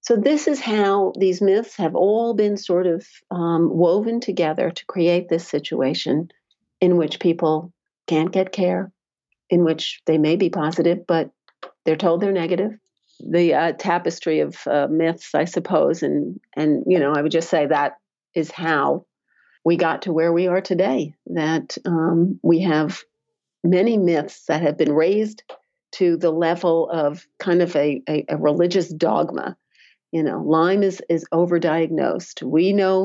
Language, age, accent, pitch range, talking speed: English, 50-69, American, 160-185 Hz, 165 wpm